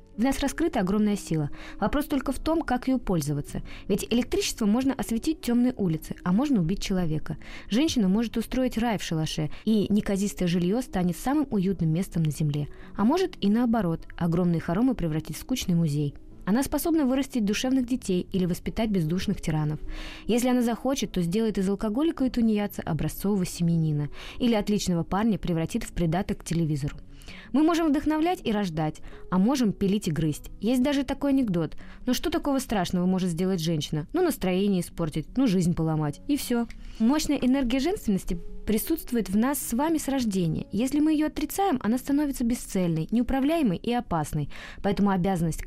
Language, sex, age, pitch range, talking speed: Russian, female, 20-39, 175-250 Hz, 165 wpm